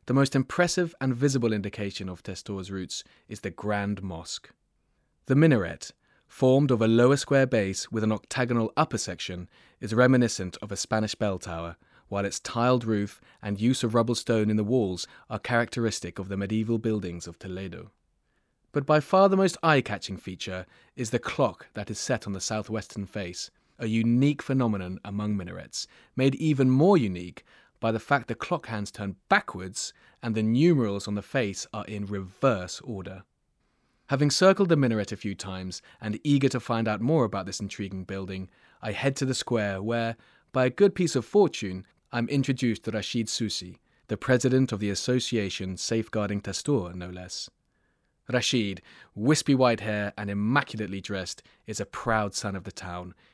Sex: male